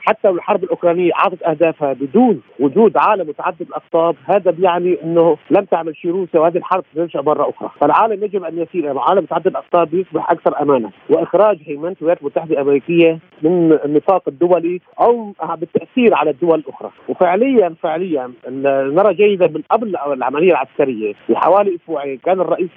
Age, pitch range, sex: 40-59, 155-185 Hz, male